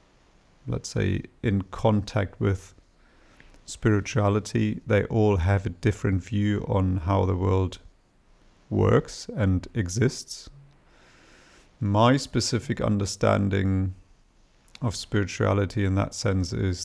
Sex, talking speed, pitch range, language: male, 100 wpm, 95-110 Hz, English